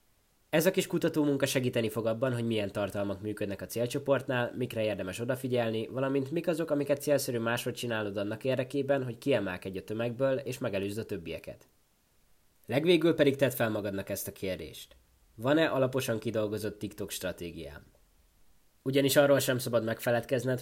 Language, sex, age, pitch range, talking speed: Hungarian, male, 20-39, 110-140 Hz, 150 wpm